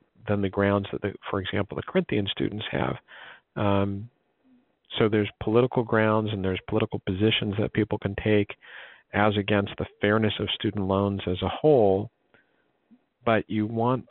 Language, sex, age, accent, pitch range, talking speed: English, male, 50-69, American, 95-110 Hz, 155 wpm